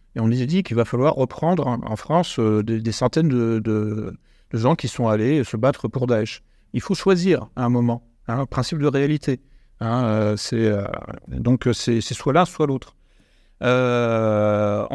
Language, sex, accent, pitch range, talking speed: French, male, French, 115-150 Hz, 195 wpm